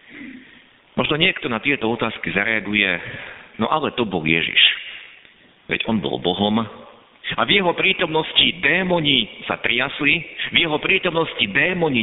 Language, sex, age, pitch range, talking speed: Slovak, male, 50-69, 115-180 Hz, 130 wpm